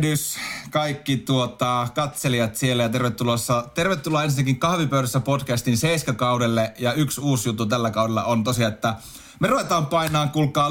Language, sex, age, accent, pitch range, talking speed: Finnish, male, 30-49, native, 115-145 Hz, 140 wpm